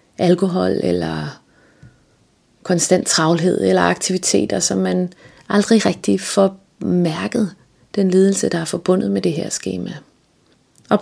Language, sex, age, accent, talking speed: Danish, female, 30-49, native, 120 wpm